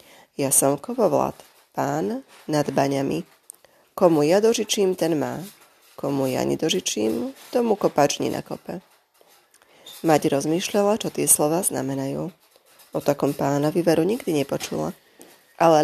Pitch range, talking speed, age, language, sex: 150-210 Hz, 115 wpm, 20-39, Slovak, female